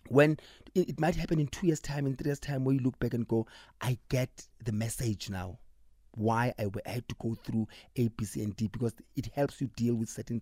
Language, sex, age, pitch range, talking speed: English, male, 30-49, 110-140 Hz, 235 wpm